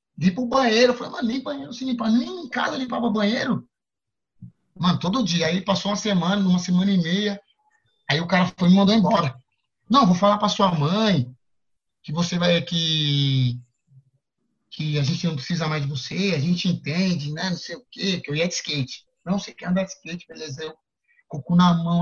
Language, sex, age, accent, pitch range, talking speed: Portuguese, male, 30-49, Brazilian, 145-195 Hz, 210 wpm